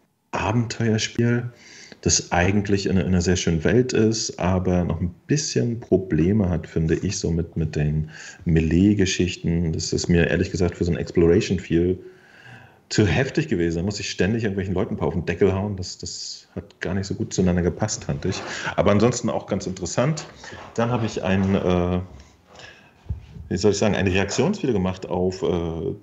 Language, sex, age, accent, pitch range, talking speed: German, male, 40-59, German, 90-110 Hz, 175 wpm